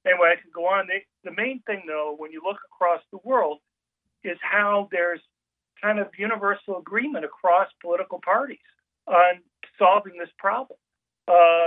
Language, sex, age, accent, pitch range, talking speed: English, male, 50-69, American, 165-200 Hz, 160 wpm